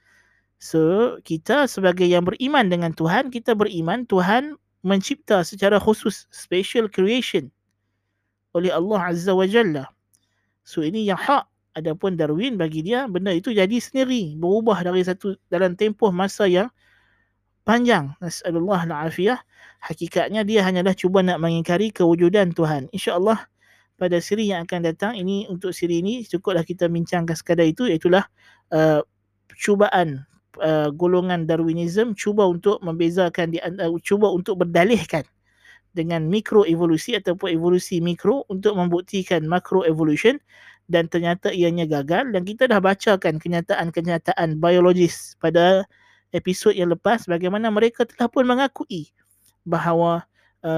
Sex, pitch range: male, 165-205 Hz